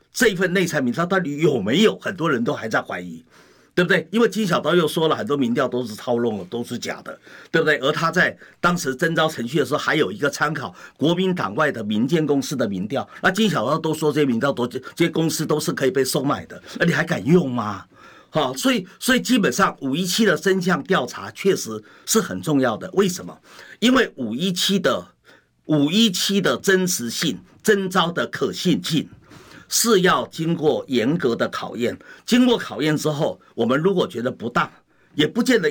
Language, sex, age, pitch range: Chinese, male, 50-69, 145-200 Hz